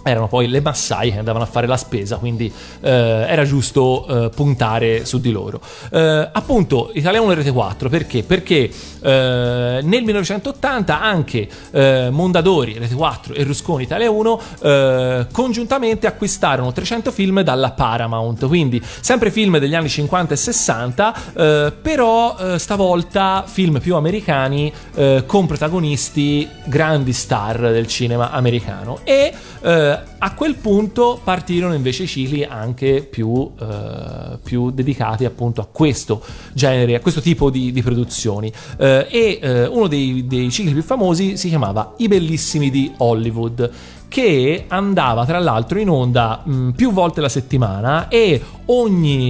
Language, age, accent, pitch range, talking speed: Italian, 30-49, native, 120-175 Hz, 145 wpm